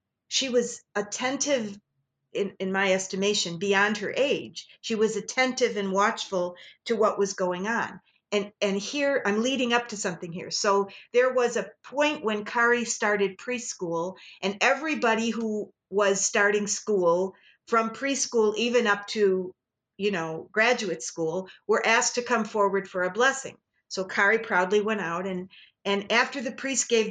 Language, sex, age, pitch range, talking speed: English, female, 50-69, 200-245 Hz, 160 wpm